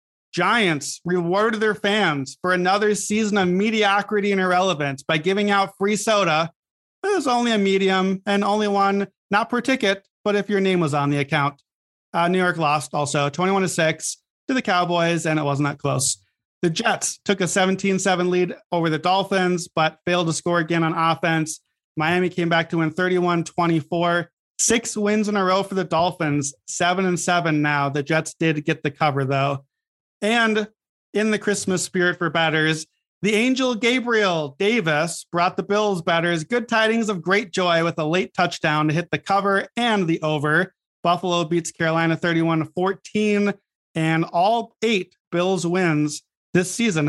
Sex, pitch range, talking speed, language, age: male, 160-200 Hz, 175 wpm, English, 30-49